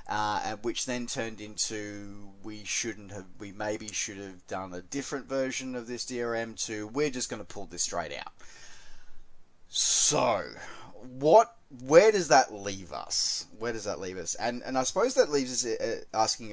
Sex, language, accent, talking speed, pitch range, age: male, English, Australian, 175 wpm, 85-115 Hz, 20-39